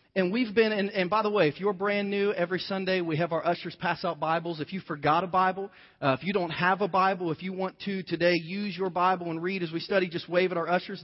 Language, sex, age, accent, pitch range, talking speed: English, male, 30-49, American, 160-195 Hz, 275 wpm